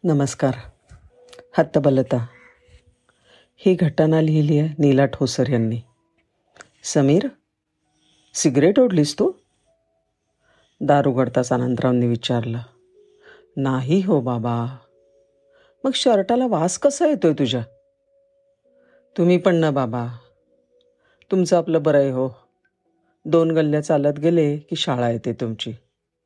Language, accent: Marathi, native